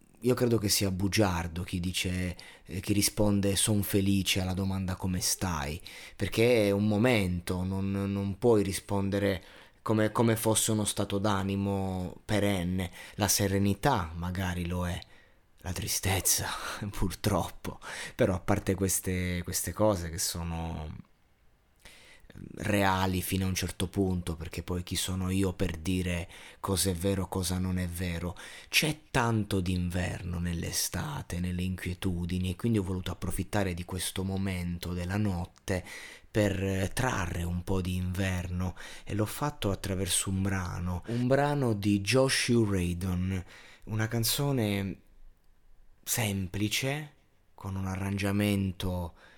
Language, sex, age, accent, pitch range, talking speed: Italian, male, 30-49, native, 90-105 Hz, 130 wpm